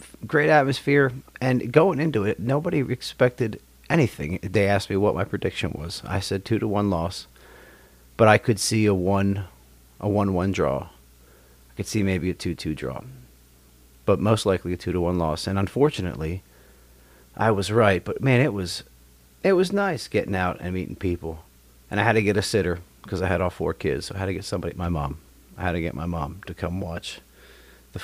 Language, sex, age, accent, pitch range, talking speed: English, male, 40-59, American, 75-110 Hz, 205 wpm